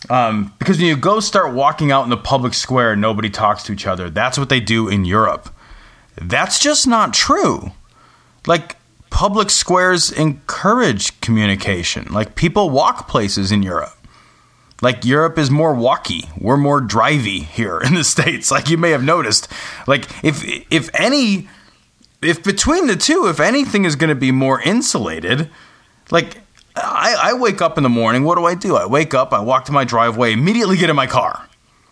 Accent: American